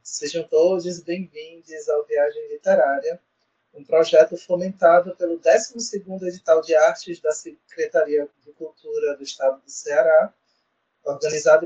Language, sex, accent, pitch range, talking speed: Portuguese, male, Brazilian, 165-225 Hz, 120 wpm